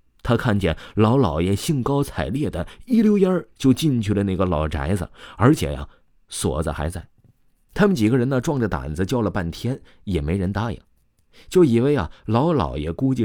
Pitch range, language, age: 85-130 Hz, Chinese, 30-49